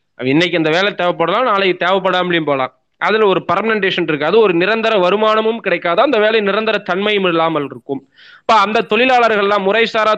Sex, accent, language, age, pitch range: male, native, Tamil, 20-39, 155-200 Hz